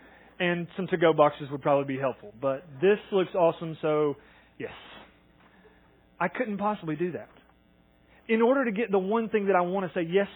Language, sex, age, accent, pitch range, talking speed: English, male, 30-49, American, 135-195 Hz, 185 wpm